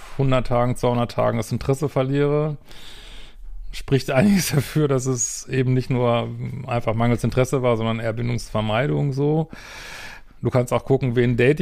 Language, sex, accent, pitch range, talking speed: German, male, German, 120-140 Hz, 145 wpm